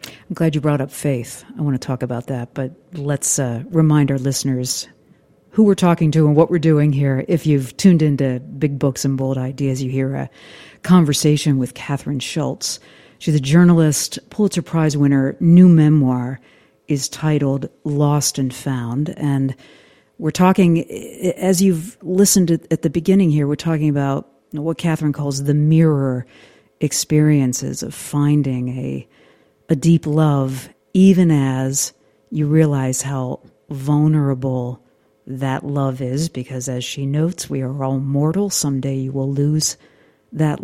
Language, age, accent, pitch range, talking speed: English, 50-69, American, 135-160 Hz, 150 wpm